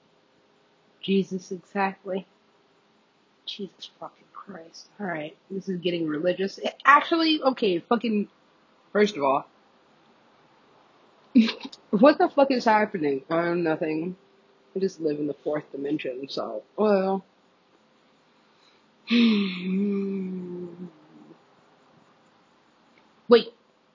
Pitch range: 165-235 Hz